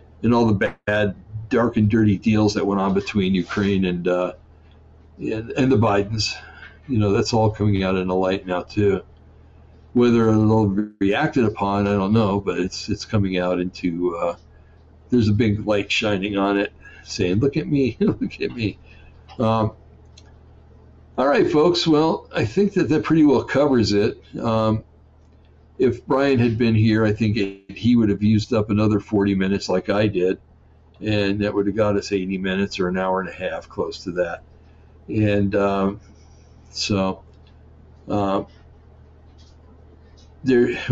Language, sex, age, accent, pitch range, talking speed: English, male, 60-79, American, 85-110 Hz, 165 wpm